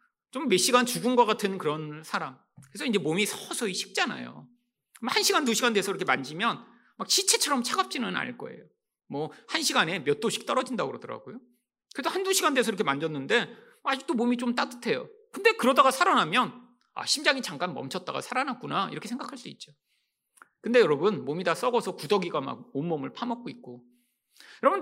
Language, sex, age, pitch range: Korean, male, 40-59, 175-275 Hz